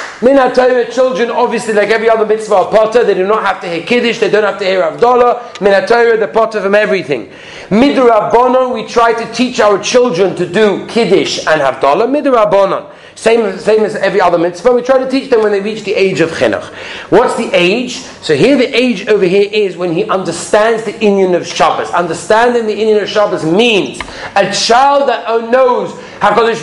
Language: English